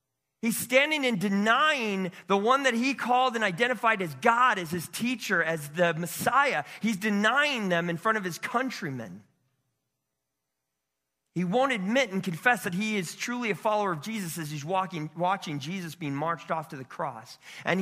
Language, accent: English, American